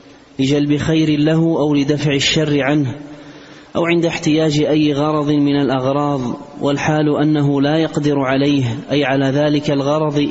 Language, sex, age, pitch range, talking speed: Arabic, male, 30-49, 145-155 Hz, 135 wpm